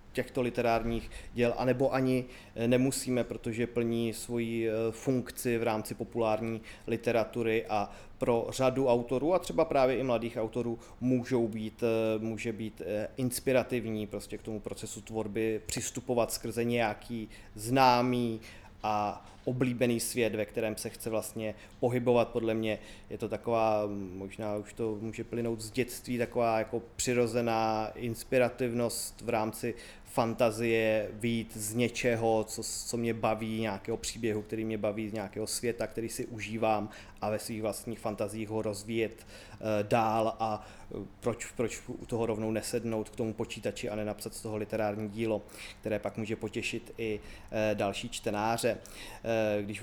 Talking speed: 140 wpm